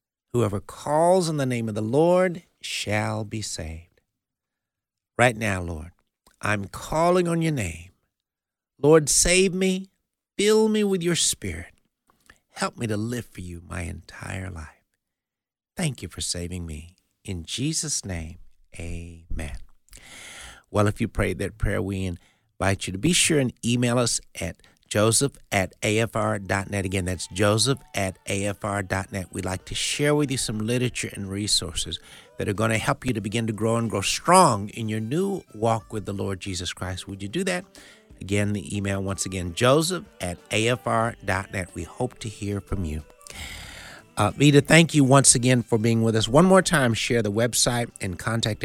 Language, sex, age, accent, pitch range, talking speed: English, male, 60-79, American, 95-125 Hz, 170 wpm